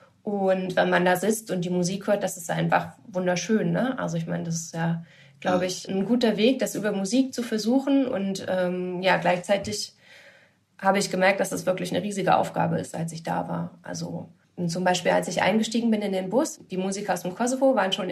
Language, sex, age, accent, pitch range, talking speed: German, female, 20-39, German, 180-205 Hz, 215 wpm